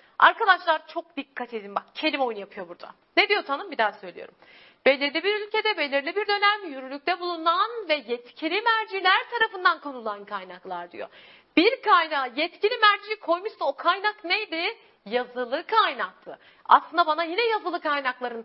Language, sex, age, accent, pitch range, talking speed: Turkish, female, 40-59, native, 250-360 Hz, 145 wpm